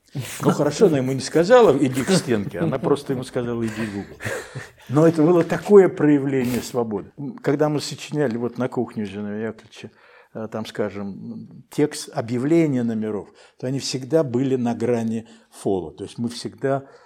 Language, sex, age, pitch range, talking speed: Russian, male, 60-79, 105-140 Hz, 160 wpm